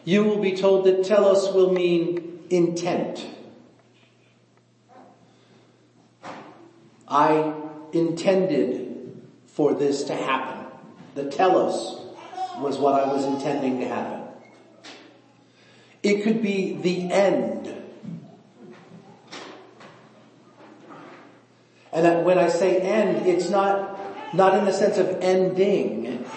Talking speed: 95 wpm